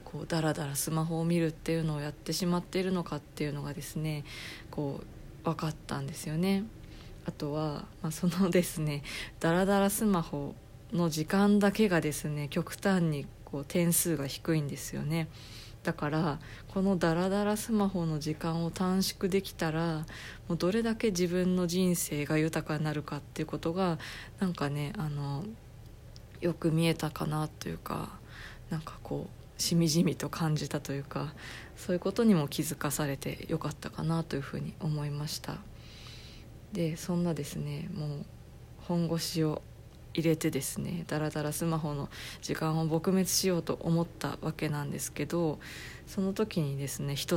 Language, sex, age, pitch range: Japanese, female, 20-39, 145-175 Hz